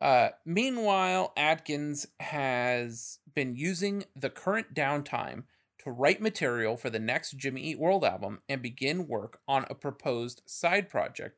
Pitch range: 130-175 Hz